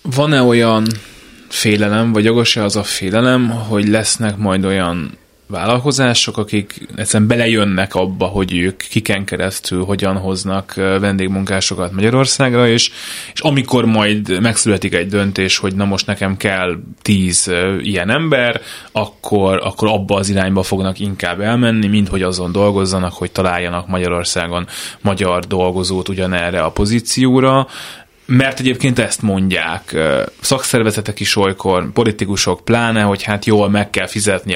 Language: Hungarian